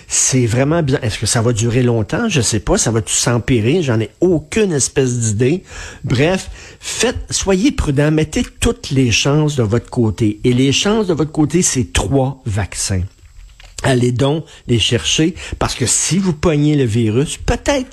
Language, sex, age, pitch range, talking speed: French, male, 50-69, 120-155 Hz, 175 wpm